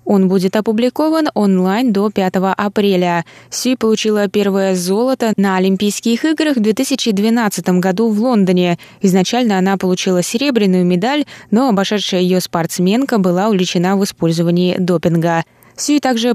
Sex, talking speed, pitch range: female, 130 wpm, 185-230 Hz